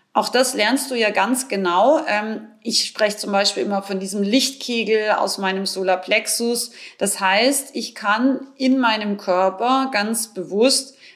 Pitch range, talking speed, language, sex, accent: 195-260 Hz, 145 wpm, German, female, German